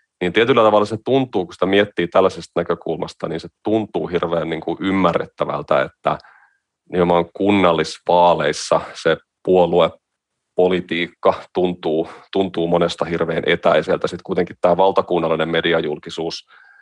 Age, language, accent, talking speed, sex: 30-49, Finnish, native, 100 wpm, male